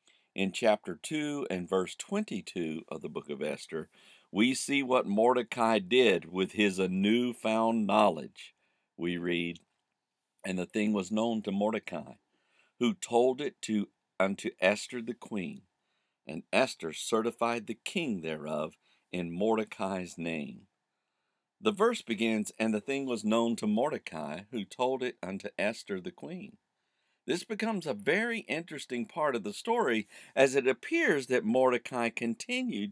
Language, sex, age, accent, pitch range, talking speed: English, male, 50-69, American, 105-150 Hz, 140 wpm